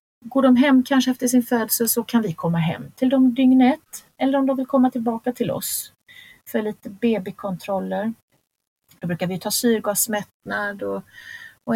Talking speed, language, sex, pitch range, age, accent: 170 wpm, Swedish, female, 195-245 Hz, 30-49, native